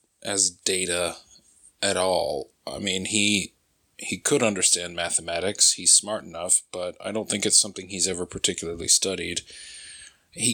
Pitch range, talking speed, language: 85-100 Hz, 140 wpm, English